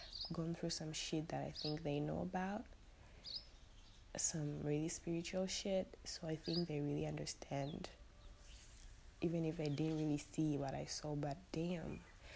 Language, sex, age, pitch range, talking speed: English, female, 20-39, 145-170 Hz, 150 wpm